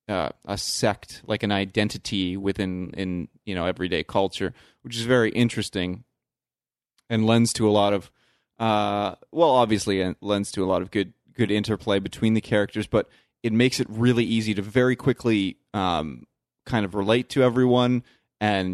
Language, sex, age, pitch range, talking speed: English, male, 30-49, 100-120 Hz, 170 wpm